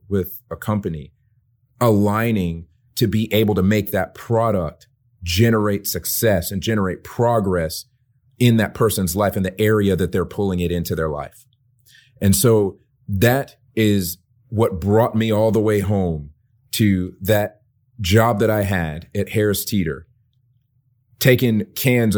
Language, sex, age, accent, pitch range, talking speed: English, male, 30-49, American, 95-120 Hz, 140 wpm